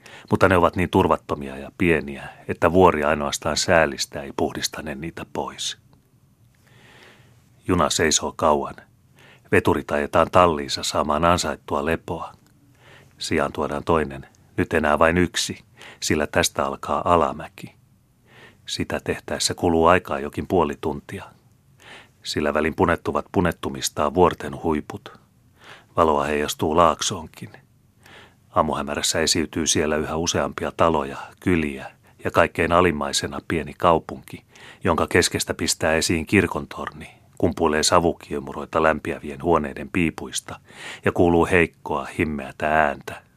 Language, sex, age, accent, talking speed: Finnish, male, 30-49, native, 110 wpm